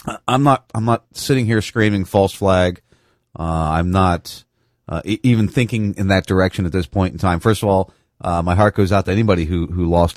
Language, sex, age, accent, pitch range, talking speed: English, male, 30-49, American, 95-125 Hz, 220 wpm